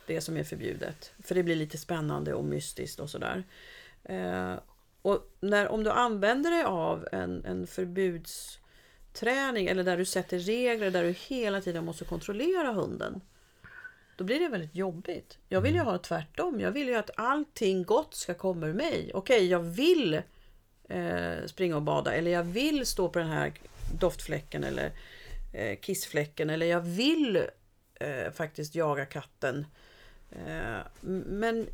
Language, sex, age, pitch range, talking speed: Swedish, female, 40-59, 165-245 Hz, 155 wpm